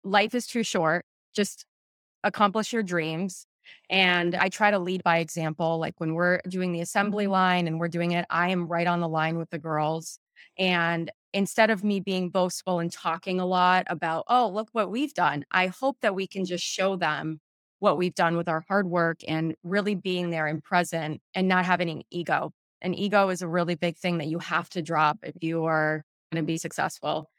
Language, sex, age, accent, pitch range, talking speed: English, female, 20-39, American, 165-205 Hz, 210 wpm